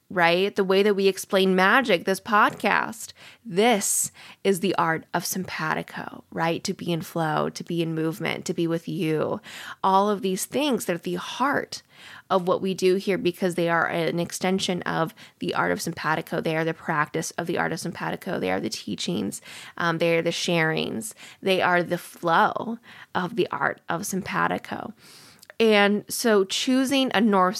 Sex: female